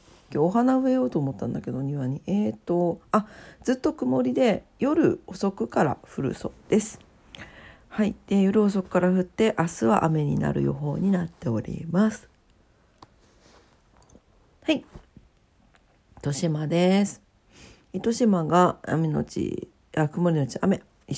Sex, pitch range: female, 155-220 Hz